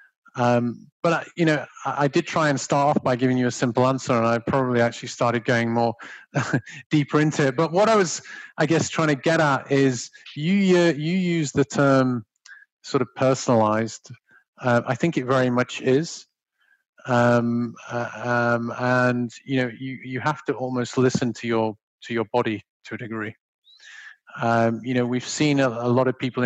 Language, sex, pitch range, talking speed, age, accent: English, male, 120-140 Hz, 195 wpm, 30-49, British